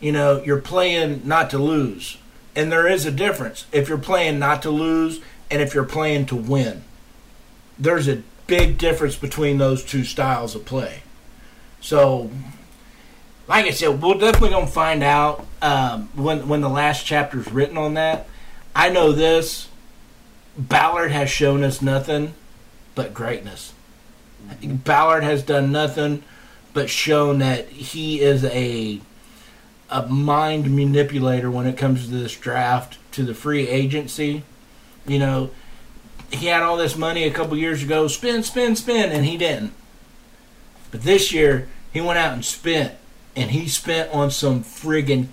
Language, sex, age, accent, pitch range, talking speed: English, male, 50-69, American, 135-165 Hz, 155 wpm